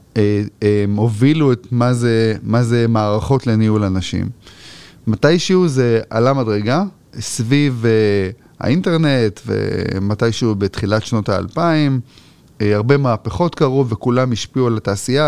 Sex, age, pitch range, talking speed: male, 30-49, 110-140 Hz, 115 wpm